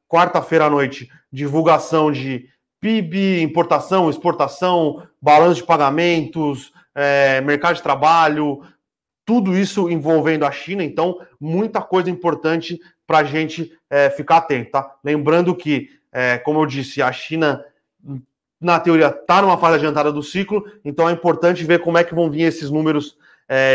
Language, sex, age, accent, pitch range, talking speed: Portuguese, male, 30-49, Brazilian, 140-170 Hz, 150 wpm